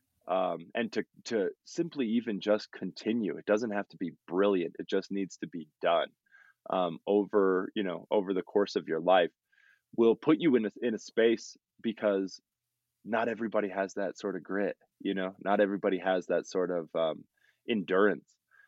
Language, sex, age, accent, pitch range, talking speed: English, male, 20-39, American, 95-120 Hz, 180 wpm